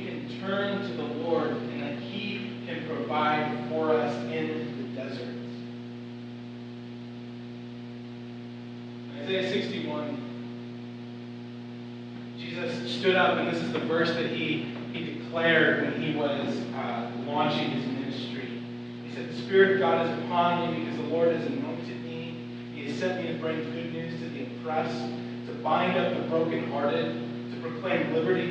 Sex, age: male, 30-49